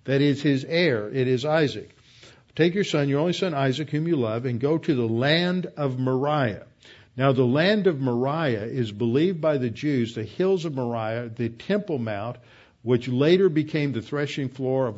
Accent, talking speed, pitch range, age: American, 190 wpm, 115-145 Hz, 50-69